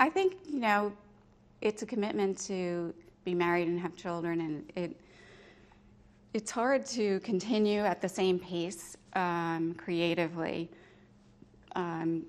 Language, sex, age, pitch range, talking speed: English, female, 30-49, 155-180 Hz, 125 wpm